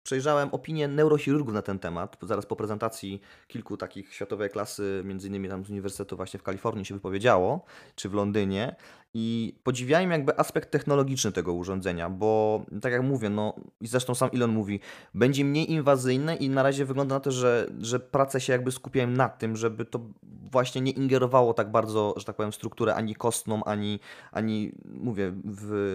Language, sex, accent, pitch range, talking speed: Polish, male, native, 105-130 Hz, 175 wpm